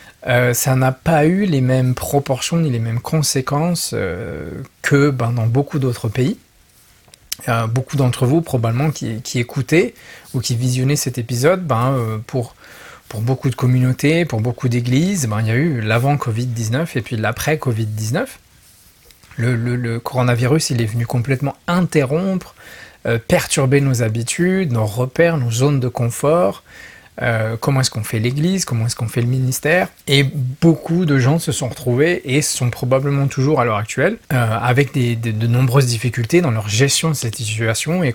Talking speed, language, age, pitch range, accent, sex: 170 wpm, French, 40-59, 120-150 Hz, French, male